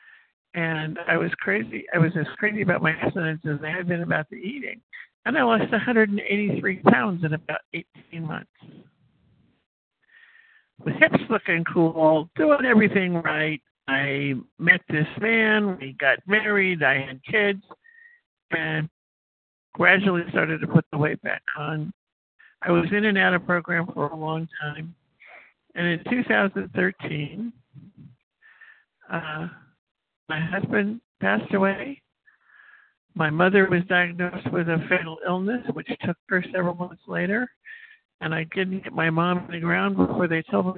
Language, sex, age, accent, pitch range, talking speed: English, male, 60-79, American, 160-210 Hz, 150 wpm